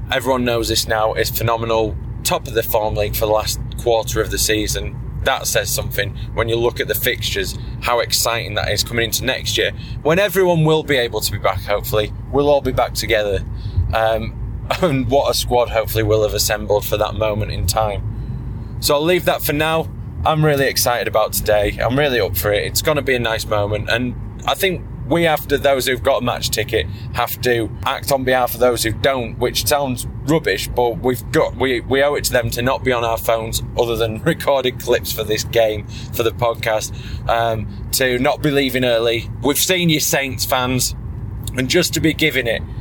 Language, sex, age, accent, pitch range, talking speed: English, male, 20-39, British, 110-130 Hz, 210 wpm